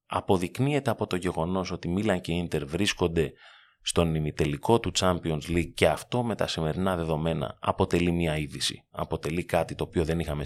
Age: 30-49